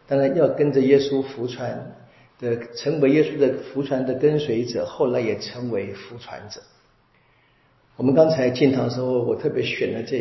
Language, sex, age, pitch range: Chinese, male, 50-69, 125-155 Hz